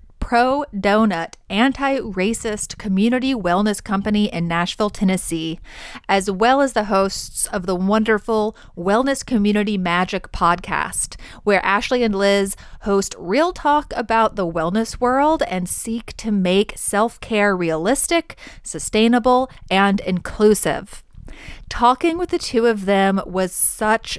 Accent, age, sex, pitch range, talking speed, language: American, 30-49, female, 195-255 Hz, 120 wpm, English